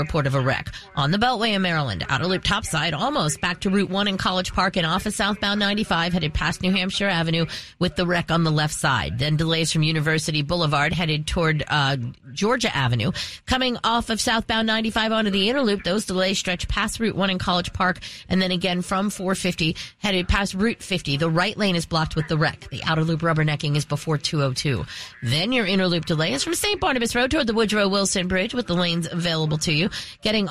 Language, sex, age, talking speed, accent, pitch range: English, female, 30-49, 225 wpm, American, 160-225 Hz